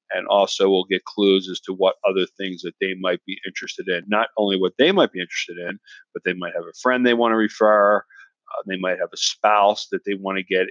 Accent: American